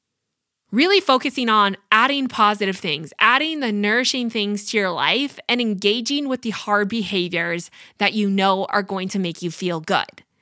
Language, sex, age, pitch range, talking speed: English, female, 20-39, 200-260 Hz, 165 wpm